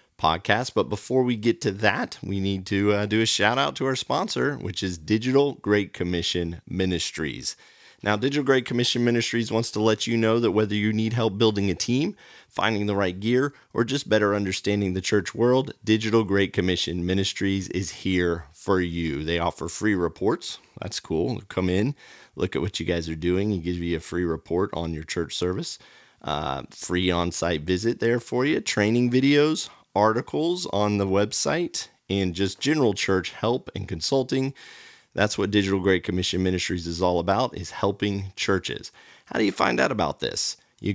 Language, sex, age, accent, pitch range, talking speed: English, male, 30-49, American, 90-115 Hz, 185 wpm